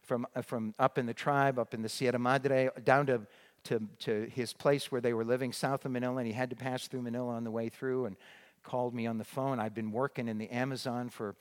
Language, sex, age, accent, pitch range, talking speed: English, male, 50-69, American, 120-145 Hz, 245 wpm